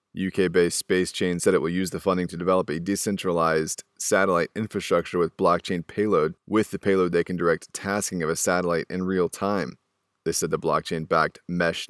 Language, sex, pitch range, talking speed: English, male, 85-100 Hz, 180 wpm